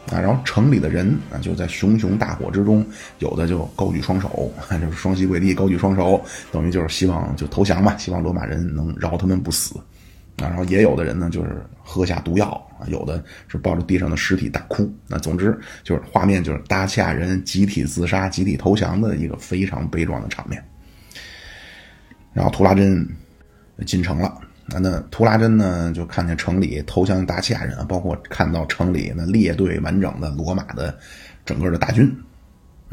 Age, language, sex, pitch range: 20-39, Chinese, male, 80-100 Hz